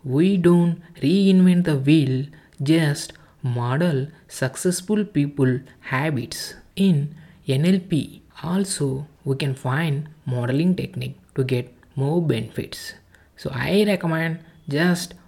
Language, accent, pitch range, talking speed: English, Indian, 135-180 Hz, 100 wpm